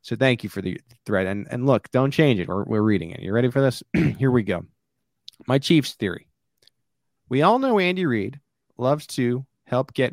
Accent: American